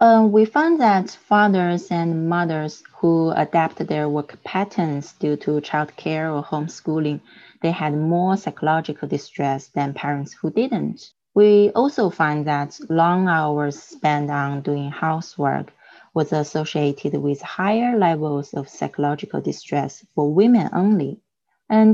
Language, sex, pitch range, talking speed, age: English, female, 145-190 Hz, 130 wpm, 30-49